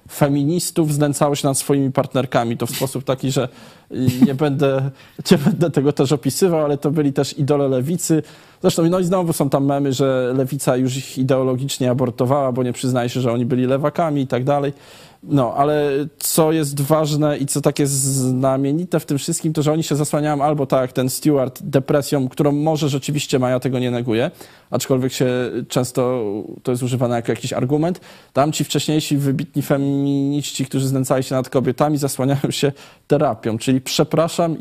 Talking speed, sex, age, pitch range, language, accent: 175 wpm, male, 20-39, 130-155 Hz, Polish, native